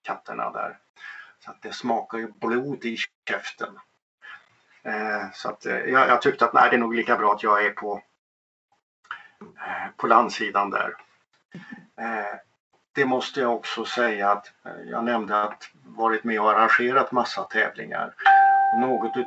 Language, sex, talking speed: Swedish, male, 155 wpm